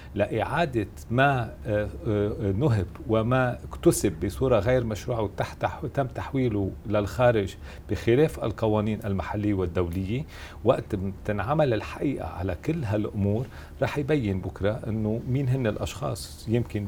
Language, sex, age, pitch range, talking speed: Arabic, male, 40-59, 100-130 Hz, 105 wpm